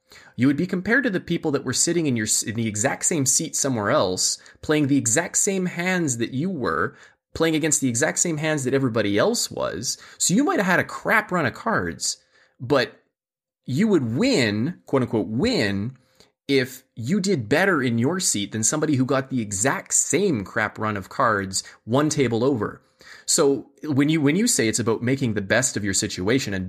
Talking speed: 200 wpm